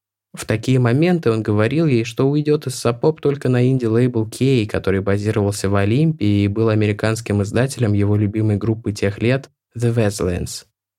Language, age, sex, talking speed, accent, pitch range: Russian, 20-39, male, 165 wpm, native, 100-120 Hz